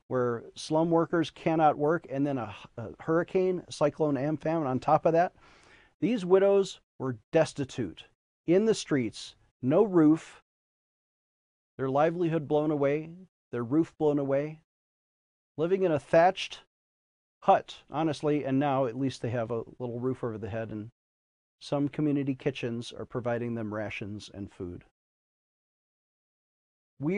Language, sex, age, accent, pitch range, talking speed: English, male, 40-59, American, 135-185 Hz, 140 wpm